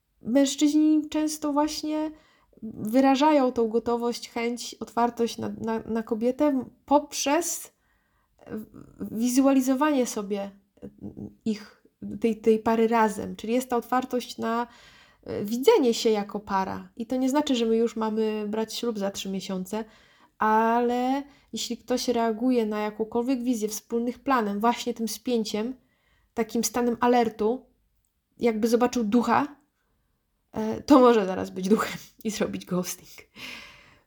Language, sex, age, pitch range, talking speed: Polish, female, 20-39, 205-245 Hz, 120 wpm